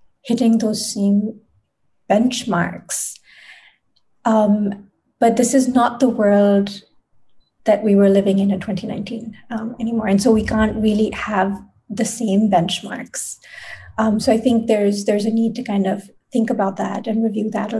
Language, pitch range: English, 200-230 Hz